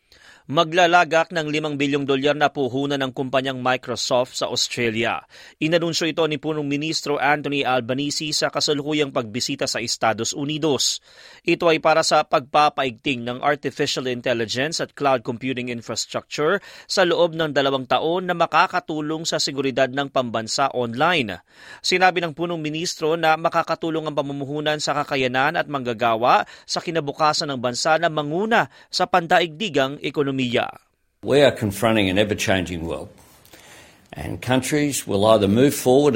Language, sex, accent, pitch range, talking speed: Filipino, male, native, 110-150 Hz, 135 wpm